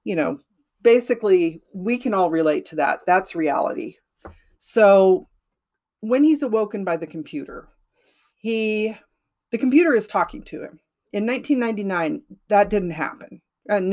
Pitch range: 165-220 Hz